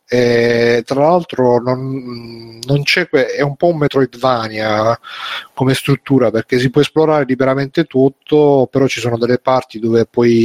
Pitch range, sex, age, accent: 120-140 Hz, male, 30-49, native